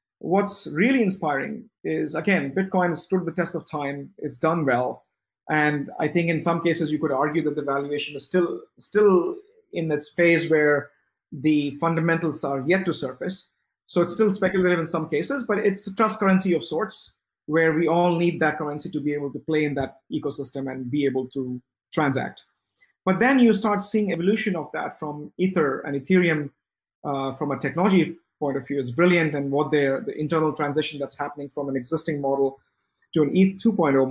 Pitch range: 145-180 Hz